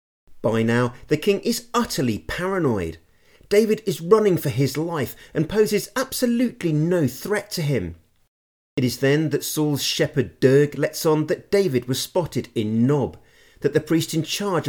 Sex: male